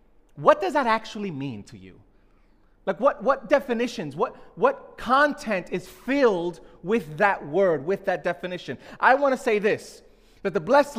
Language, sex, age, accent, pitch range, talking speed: English, male, 30-49, American, 195-250 Hz, 165 wpm